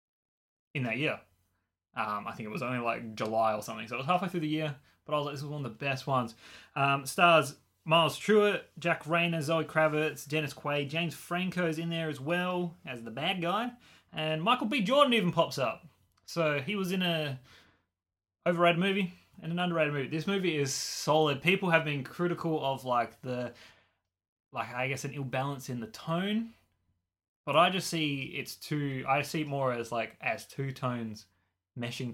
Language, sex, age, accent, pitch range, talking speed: English, male, 20-39, Australian, 115-160 Hz, 200 wpm